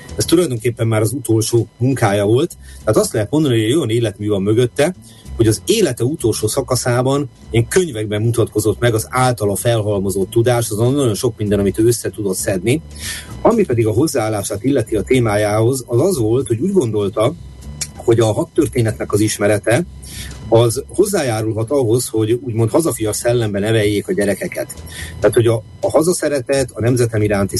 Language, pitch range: Hungarian, 105-120 Hz